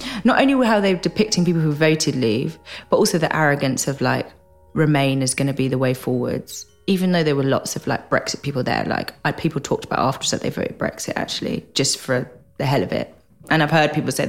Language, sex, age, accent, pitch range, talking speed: English, female, 20-39, British, 145-190 Hz, 225 wpm